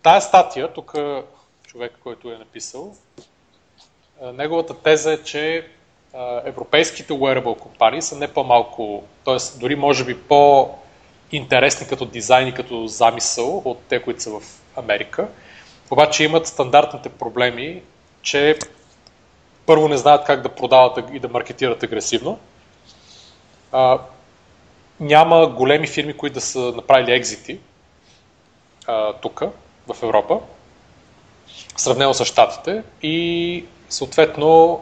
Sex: male